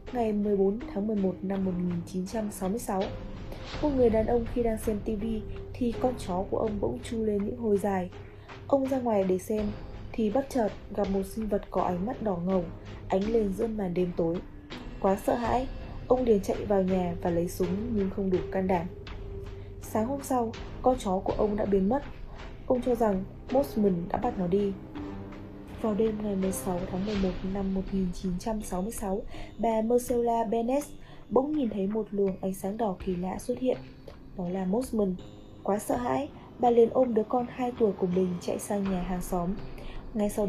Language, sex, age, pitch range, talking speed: Vietnamese, female, 20-39, 185-230 Hz, 190 wpm